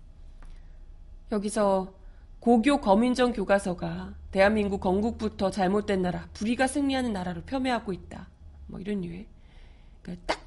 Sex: female